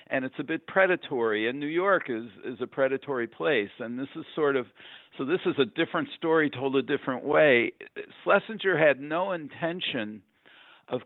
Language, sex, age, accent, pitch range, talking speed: English, male, 50-69, American, 120-150 Hz, 180 wpm